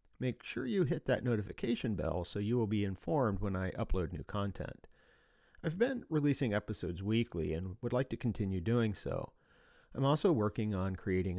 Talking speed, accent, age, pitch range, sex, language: 180 wpm, American, 40-59, 90-115 Hz, male, English